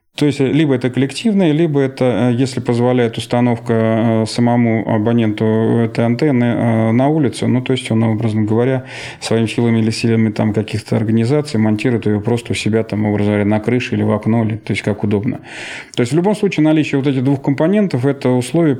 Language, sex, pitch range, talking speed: Russian, male, 110-135 Hz, 180 wpm